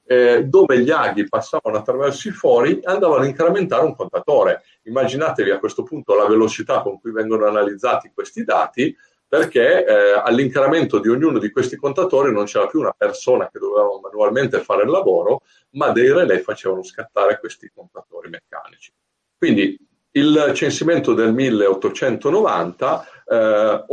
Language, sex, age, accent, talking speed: Italian, male, 50-69, native, 145 wpm